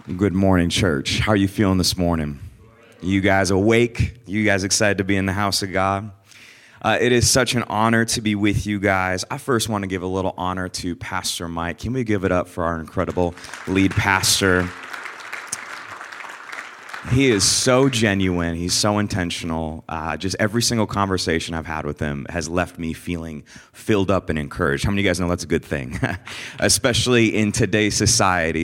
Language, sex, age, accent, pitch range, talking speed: English, male, 30-49, American, 90-110 Hz, 195 wpm